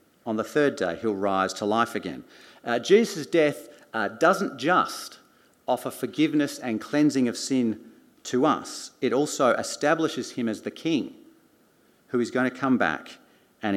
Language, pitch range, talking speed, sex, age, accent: English, 115-155 Hz, 160 wpm, male, 50-69, Australian